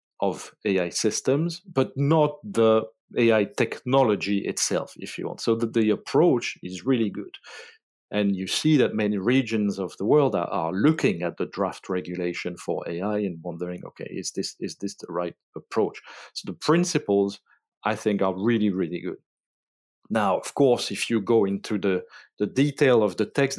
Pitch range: 100-120 Hz